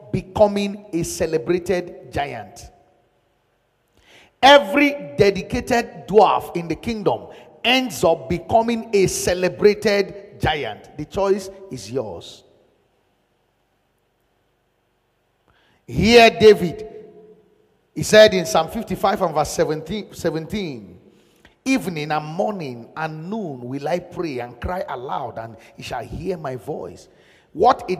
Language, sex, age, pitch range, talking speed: English, male, 50-69, 170-235 Hz, 105 wpm